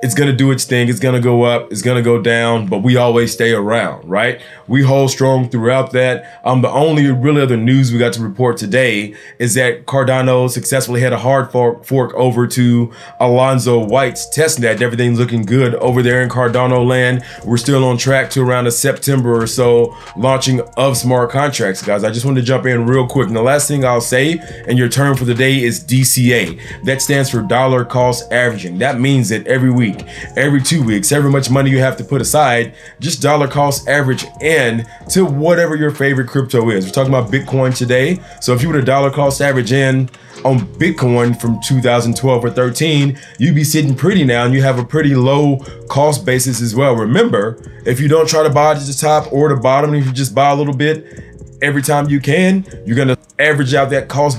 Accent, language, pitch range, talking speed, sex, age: American, English, 120-140 Hz, 215 wpm, male, 20-39